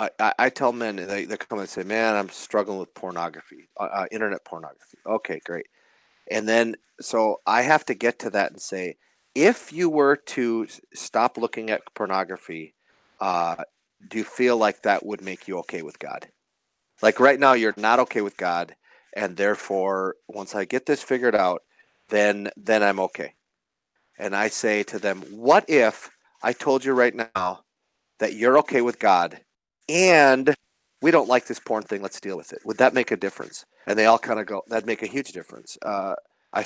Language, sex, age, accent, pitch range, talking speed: English, male, 40-59, American, 105-145 Hz, 190 wpm